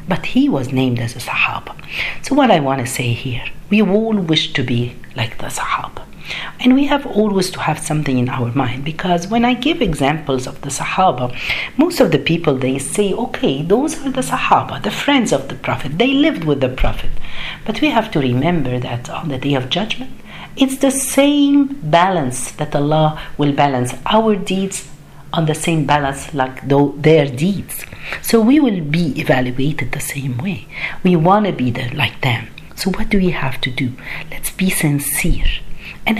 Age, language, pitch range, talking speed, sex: 50-69, Arabic, 135-205 Hz, 190 wpm, female